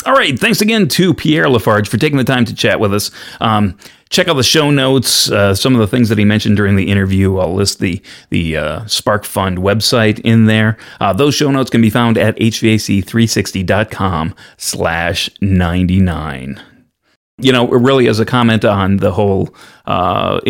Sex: male